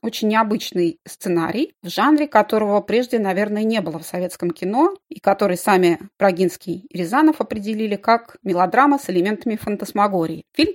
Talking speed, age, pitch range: 145 wpm, 30-49, 185-235 Hz